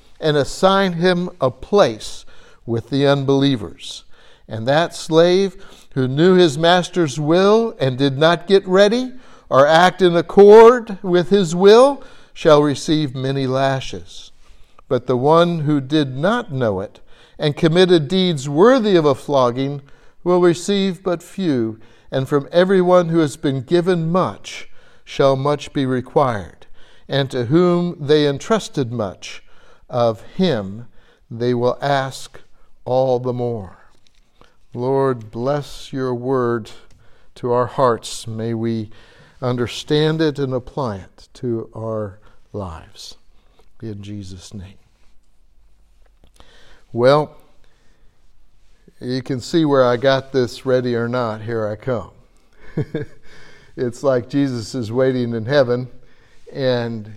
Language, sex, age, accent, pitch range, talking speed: English, male, 60-79, American, 120-170 Hz, 125 wpm